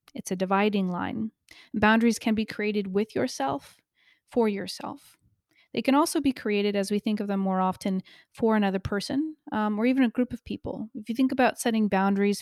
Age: 30-49